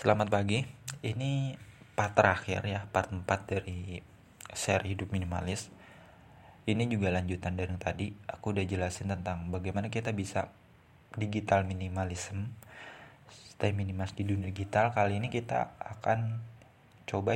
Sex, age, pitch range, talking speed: male, 20-39, 95-120 Hz, 130 wpm